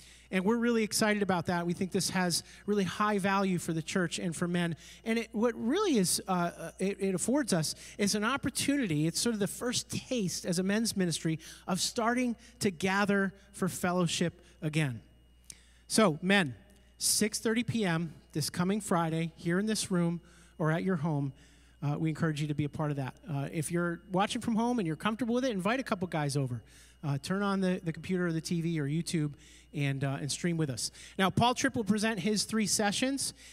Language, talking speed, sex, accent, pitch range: English, 205 wpm, male, American, 160-205 Hz